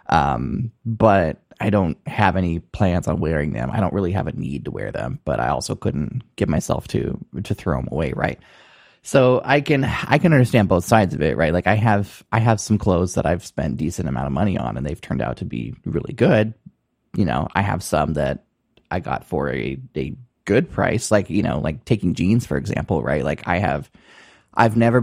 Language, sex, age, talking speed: English, male, 20-39, 220 wpm